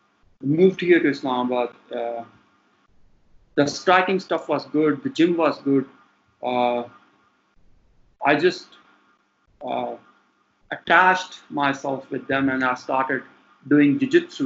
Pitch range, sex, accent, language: 125-160 Hz, male, Indian, English